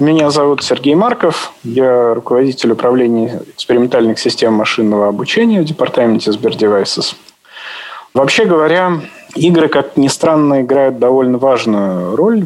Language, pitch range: Russian, 110-150 Hz